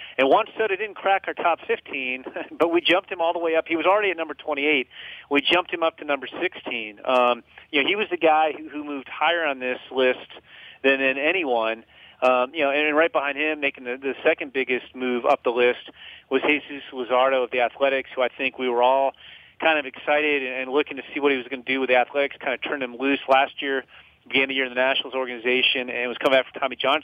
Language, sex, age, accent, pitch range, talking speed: English, male, 40-59, American, 130-150 Hz, 245 wpm